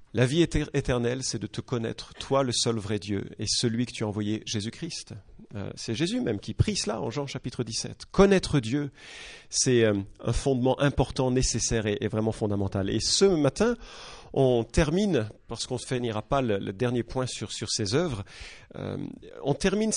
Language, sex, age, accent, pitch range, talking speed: English, male, 40-59, French, 115-190 Hz, 195 wpm